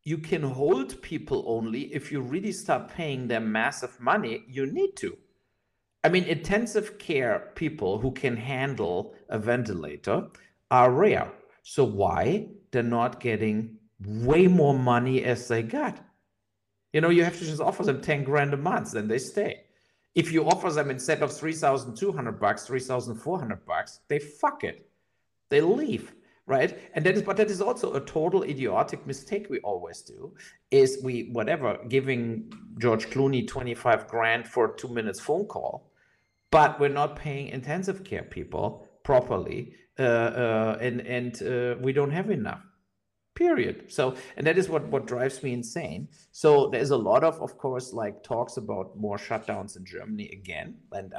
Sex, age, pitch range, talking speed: male, 50-69, 120-175 Hz, 165 wpm